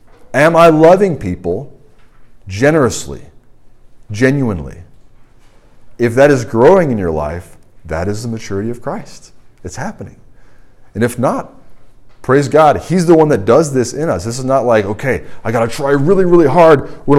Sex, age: male, 40-59